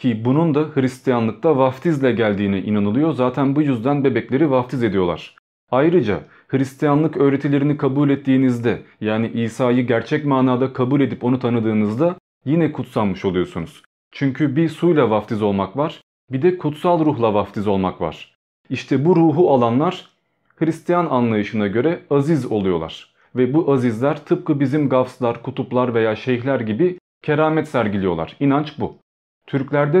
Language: Turkish